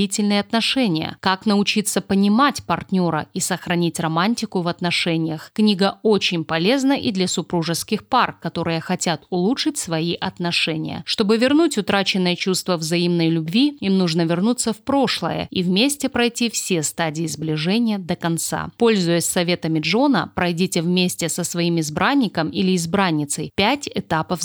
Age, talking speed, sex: 30-49, 130 wpm, female